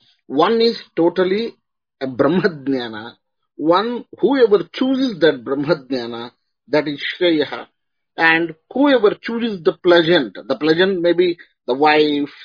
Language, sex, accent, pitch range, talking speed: English, male, Indian, 140-195 Hz, 115 wpm